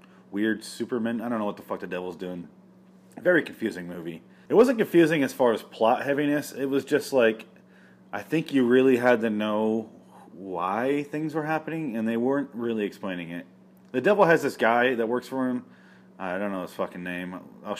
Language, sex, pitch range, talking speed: English, male, 100-140 Hz, 200 wpm